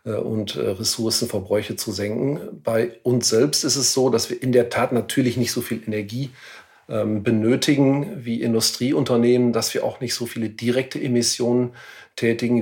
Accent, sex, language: German, male, German